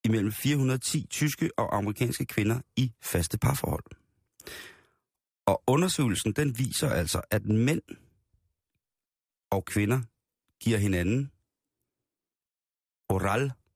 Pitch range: 95-115 Hz